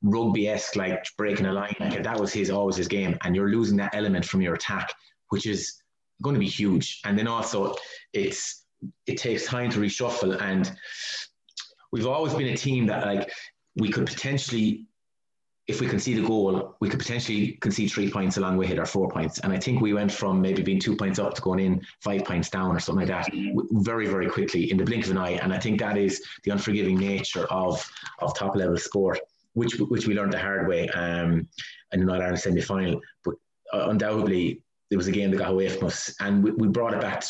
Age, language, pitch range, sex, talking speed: 30-49, English, 95-105 Hz, male, 225 wpm